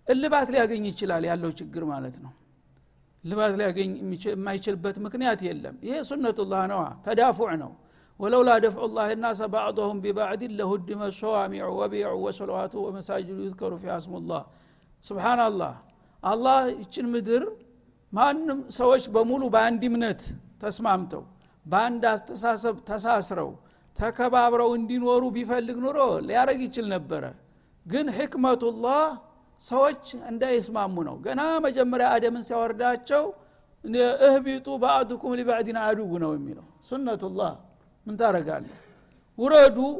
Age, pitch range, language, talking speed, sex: 60-79, 205-255 Hz, Amharic, 90 wpm, male